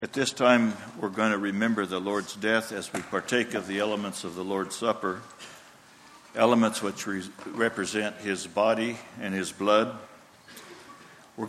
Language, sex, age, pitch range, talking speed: English, male, 60-79, 100-120 Hz, 150 wpm